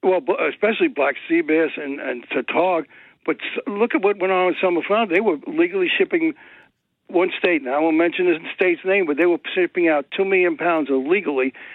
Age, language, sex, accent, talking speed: 60-79, English, male, American, 200 wpm